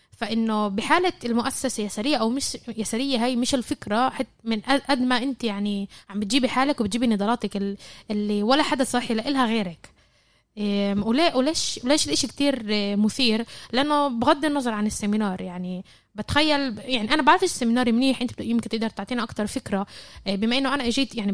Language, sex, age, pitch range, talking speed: Arabic, female, 20-39, 215-275 Hz, 155 wpm